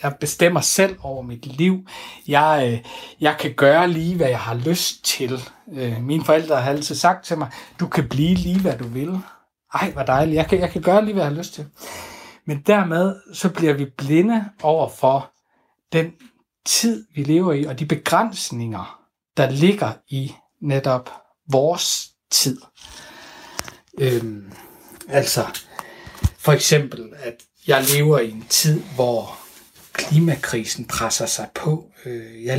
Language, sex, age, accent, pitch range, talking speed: Danish, male, 60-79, native, 135-180 Hz, 145 wpm